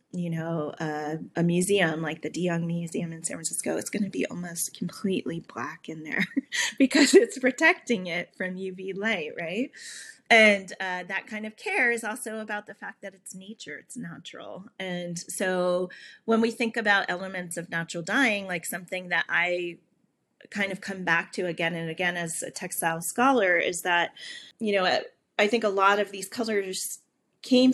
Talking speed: 180 wpm